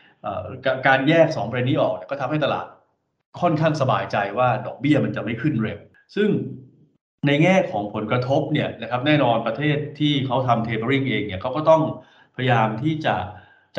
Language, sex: Thai, male